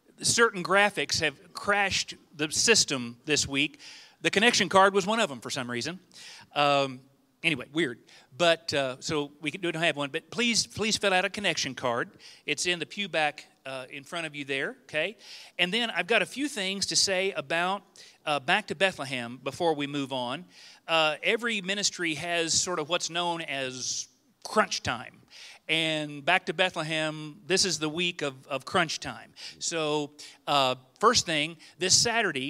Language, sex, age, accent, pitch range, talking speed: English, male, 40-59, American, 145-175 Hz, 175 wpm